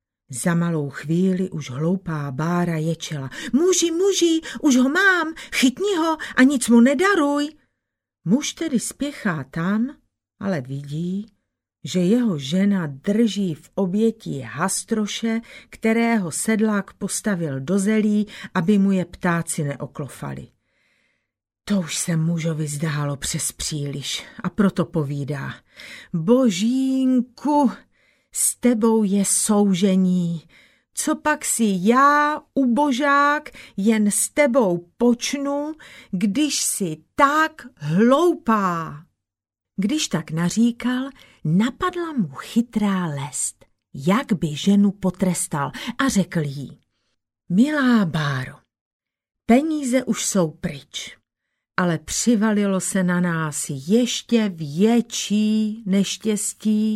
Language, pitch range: Czech, 165-245 Hz